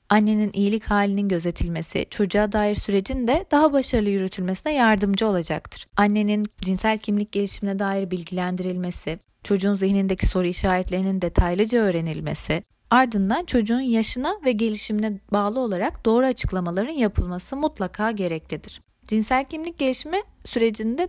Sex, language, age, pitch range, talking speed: female, Turkish, 30-49, 195-255 Hz, 115 wpm